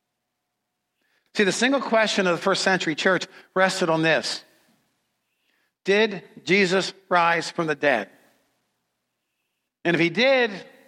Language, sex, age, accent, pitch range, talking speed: English, male, 50-69, American, 180-245 Hz, 120 wpm